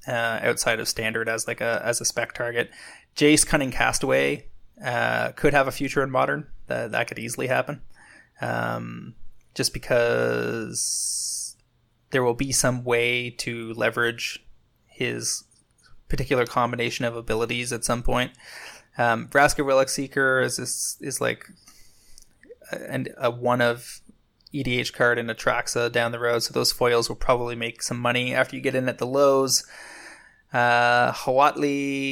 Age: 20-39